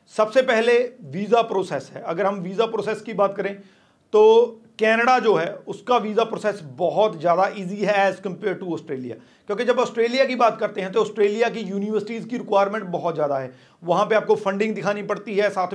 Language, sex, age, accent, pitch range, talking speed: Hindi, male, 40-59, native, 190-225 Hz, 195 wpm